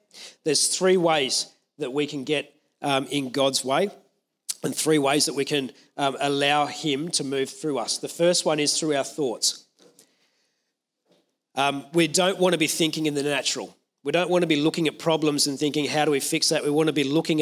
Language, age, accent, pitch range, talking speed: English, 40-59, Australian, 145-165 Hz, 210 wpm